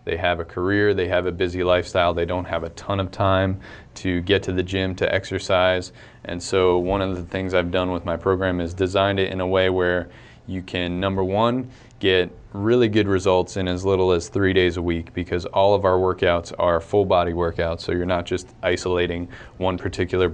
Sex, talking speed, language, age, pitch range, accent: male, 215 wpm, English, 20-39, 90-100 Hz, American